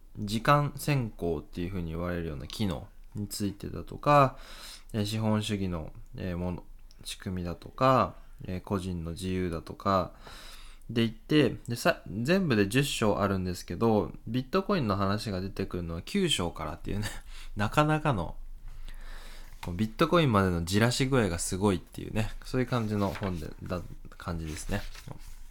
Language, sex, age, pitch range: English, male, 20-39, 90-125 Hz